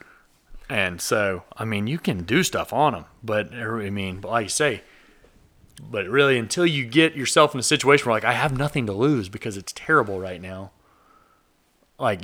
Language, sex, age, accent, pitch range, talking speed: English, male, 30-49, American, 105-135 Hz, 185 wpm